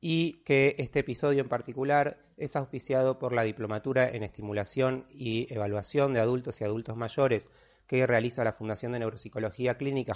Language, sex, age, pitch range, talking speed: Spanish, male, 30-49, 115-140 Hz, 160 wpm